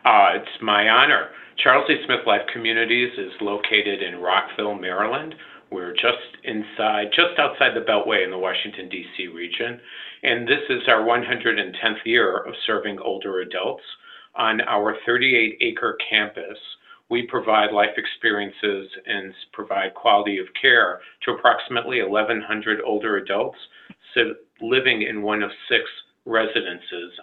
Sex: male